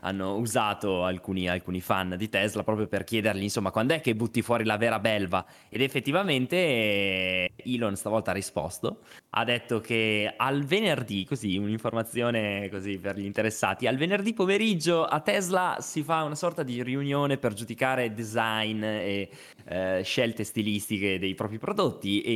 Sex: male